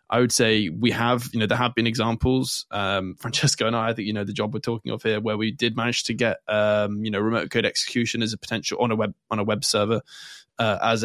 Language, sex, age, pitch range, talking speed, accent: English, male, 20-39, 105-125 Hz, 265 wpm, British